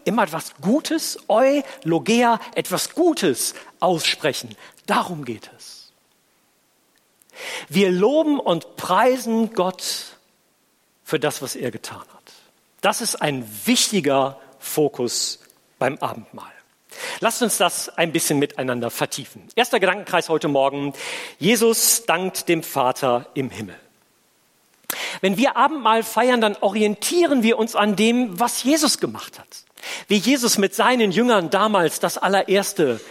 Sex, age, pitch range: male, 40-59, 145-230 Hz